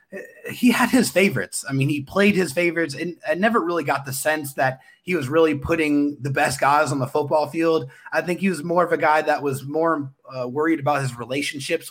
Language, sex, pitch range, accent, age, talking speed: English, male, 140-180 Hz, American, 30-49, 225 wpm